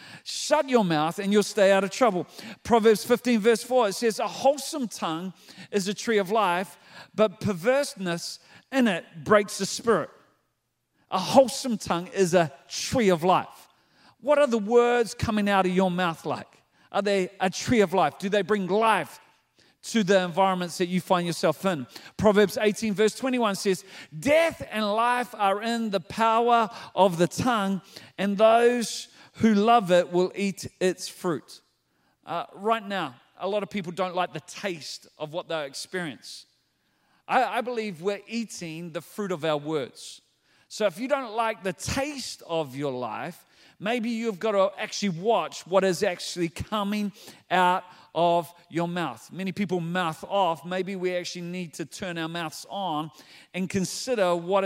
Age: 40-59